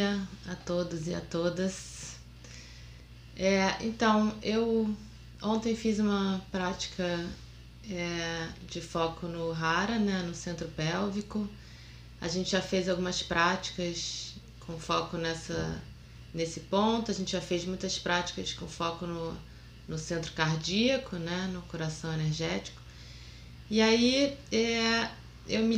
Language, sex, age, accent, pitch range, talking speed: Portuguese, female, 20-39, Brazilian, 165-200 Hz, 125 wpm